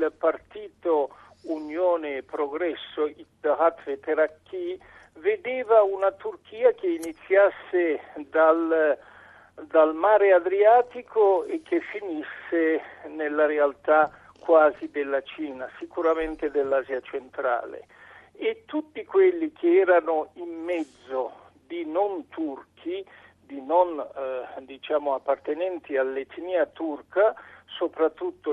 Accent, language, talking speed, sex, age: native, Italian, 90 wpm, male, 50-69